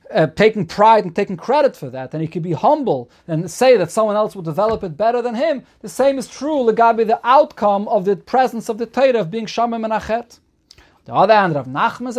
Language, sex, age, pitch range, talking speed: English, male, 40-59, 160-215 Hz, 220 wpm